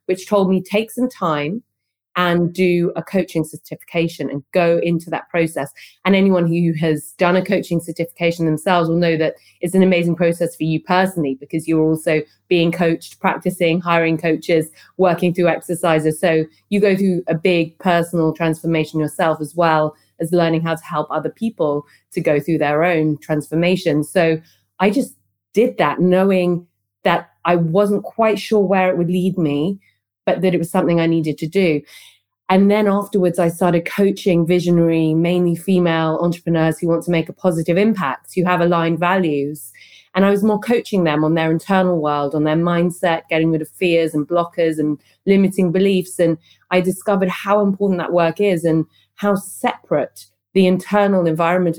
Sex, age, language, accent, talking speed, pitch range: female, 30-49, English, British, 175 wpm, 160-185 Hz